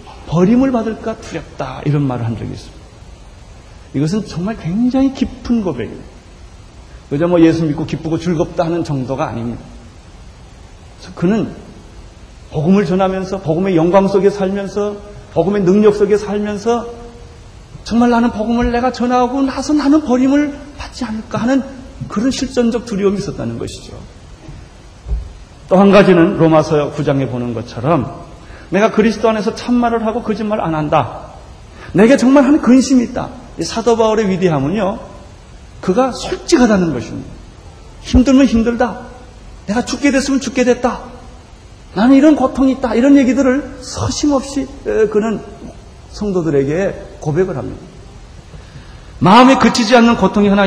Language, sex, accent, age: Korean, male, native, 30-49